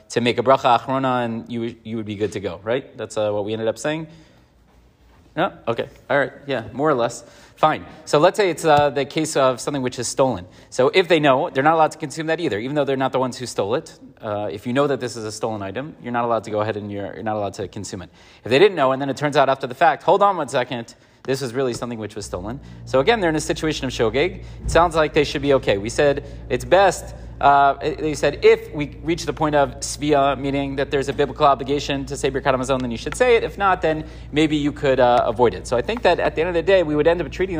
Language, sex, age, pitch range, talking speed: English, male, 30-49, 120-155 Hz, 280 wpm